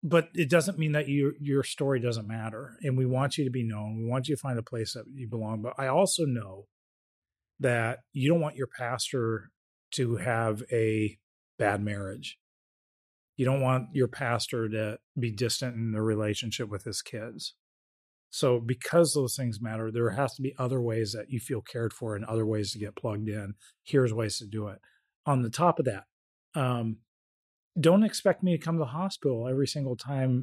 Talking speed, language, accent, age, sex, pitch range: 195 wpm, English, American, 30-49, male, 110-140 Hz